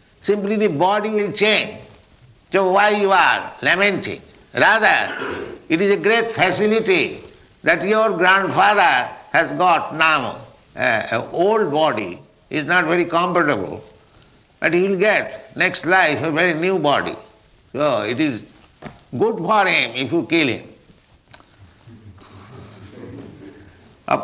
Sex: male